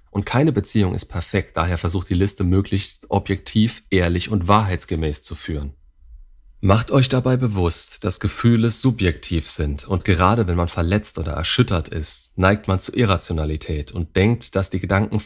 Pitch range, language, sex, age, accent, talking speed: 80-105 Hz, German, male, 40-59, German, 160 wpm